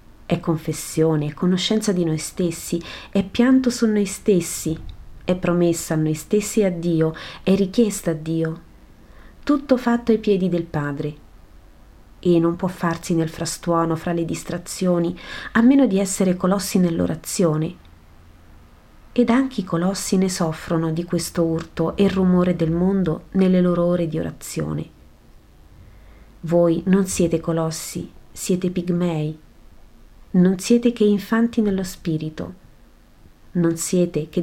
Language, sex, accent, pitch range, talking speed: Italian, female, native, 155-195 Hz, 135 wpm